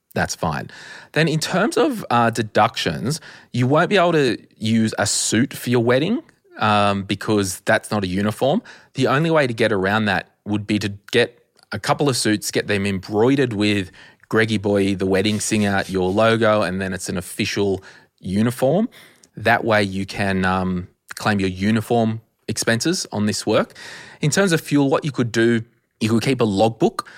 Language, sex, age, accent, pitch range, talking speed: English, male, 20-39, Australian, 100-120 Hz, 180 wpm